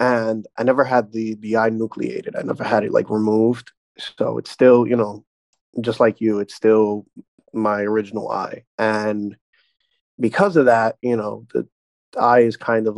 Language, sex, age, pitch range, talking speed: English, male, 20-39, 110-125 Hz, 180 wpm